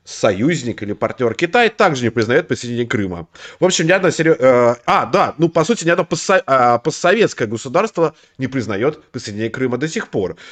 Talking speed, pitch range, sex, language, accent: 170 wpm, 110-155 Hz, male, Russian, native